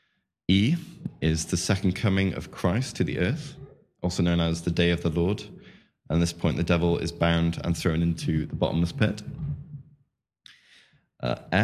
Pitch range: 85-105 Hz